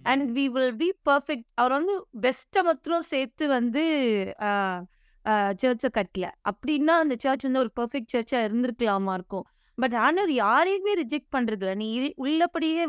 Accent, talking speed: native, 140 wpm